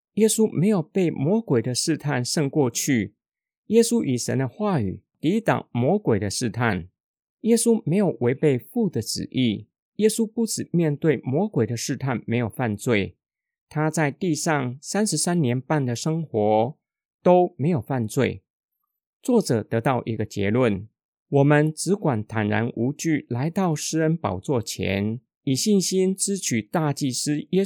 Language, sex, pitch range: Chinese, male, 115-180 Hz